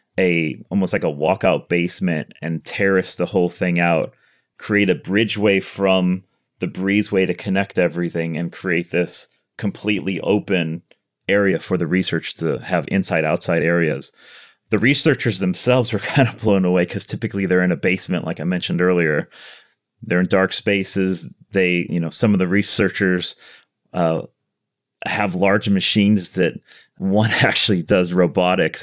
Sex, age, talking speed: male, 30-49, 150 wpm